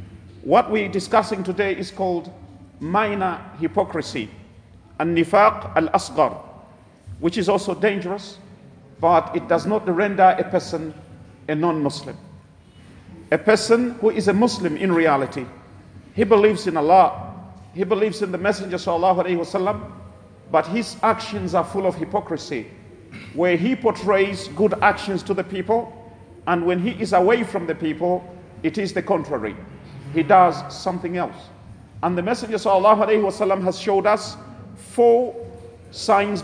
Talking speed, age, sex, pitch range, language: 135 wpm, 40-59, male, 160-215 Hz, English